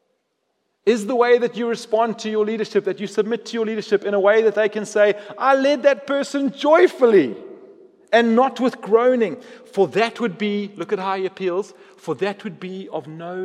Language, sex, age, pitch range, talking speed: English, male, 30-49, 150-210 Hz, 205 wpm